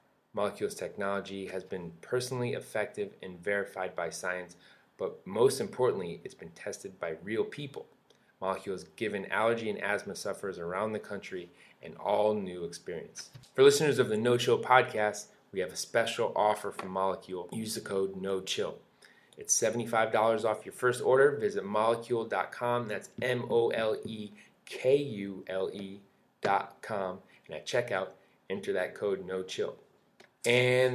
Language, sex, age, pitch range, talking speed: English, male, 20-39, 100-130 Hz, 140 wpm